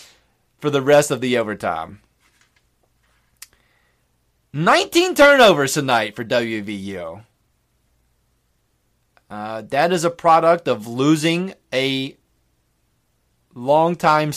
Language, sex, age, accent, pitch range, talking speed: English, male, 30-49, American, 120-180 Hz, 85 wpm